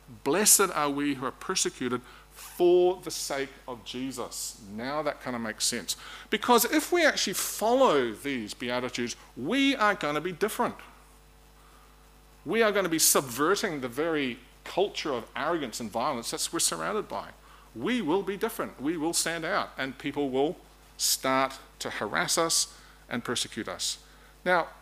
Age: 40-59